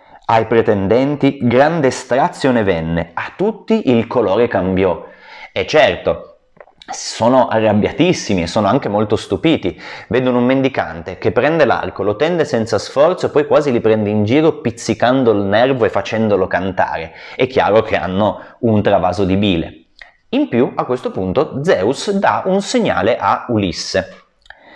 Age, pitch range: 30-49, 95-140 Hz